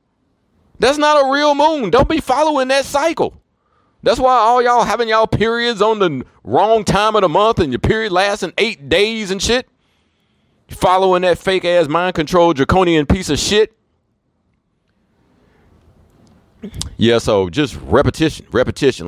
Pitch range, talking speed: 105-175 Hz, 150 wpm